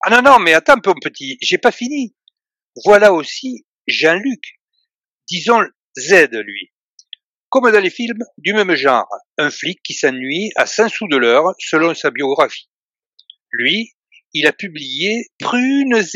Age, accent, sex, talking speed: 60-79, French, male, 150 wpm